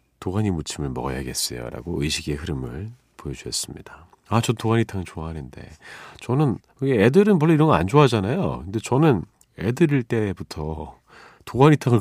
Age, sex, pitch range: 40-59, male, 85-140 Hz